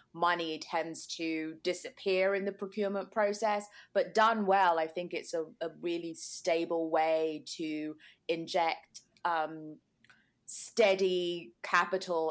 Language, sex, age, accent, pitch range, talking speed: English, female, 20-39, British, 160-195 Hz, 115 wpm